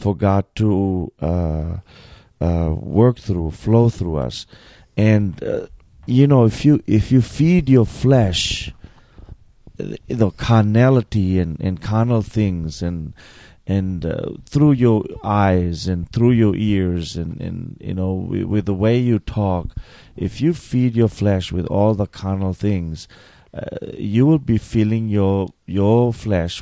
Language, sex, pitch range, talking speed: English, male, 90-115 Hz, 145 wpm